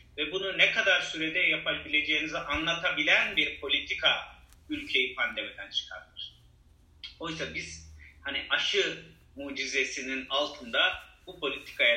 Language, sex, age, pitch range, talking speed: Turkish, male, 40-59, 135-170 Hz, 100 wpm